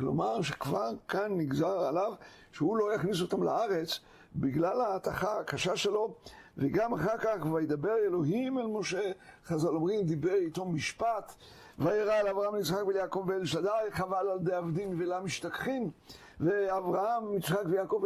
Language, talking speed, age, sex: Hebrew, 135 wpm, 60-79, male